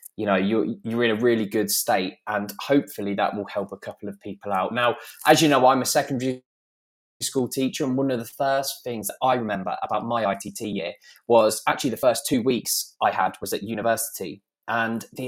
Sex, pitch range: male, 110-145 Hz